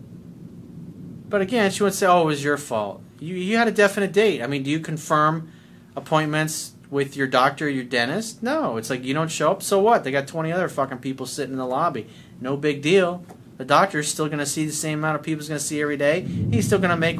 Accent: American